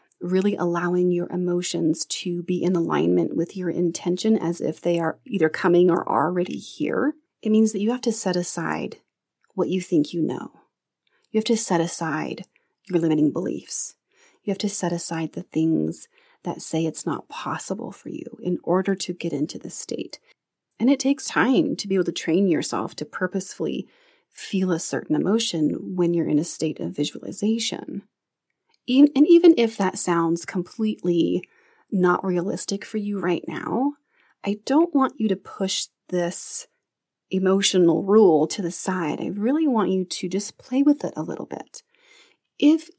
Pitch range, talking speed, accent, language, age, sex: 175-225 Hz, 170 wpm, American, English, 30-49, female